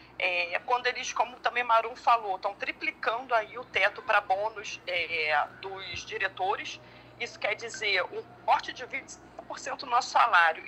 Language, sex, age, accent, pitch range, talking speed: Portuguese, female, 40-59, Brazilian, 180-240 Hz, 150 wpm